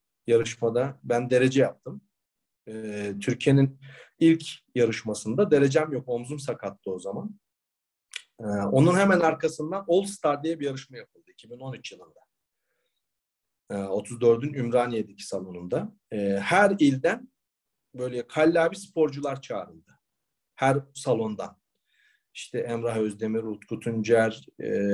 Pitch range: 105-155 Hz